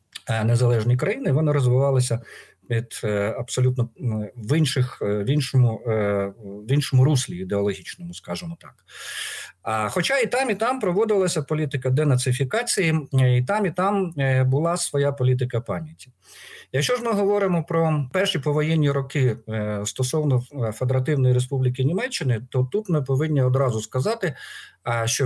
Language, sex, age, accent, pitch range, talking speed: Ukrainian, male, 50-69, native, 120-155 Hz, 120 wpm